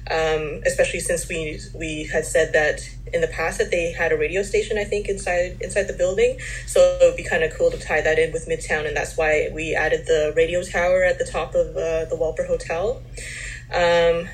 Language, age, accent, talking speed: English, 20-39, American, 220 wpm